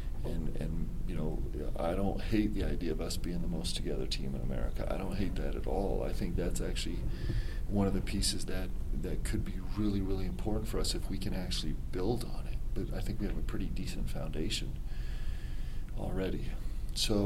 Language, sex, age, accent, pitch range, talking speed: English, male, 40-59, American, 65-95 Hz, 205 wpm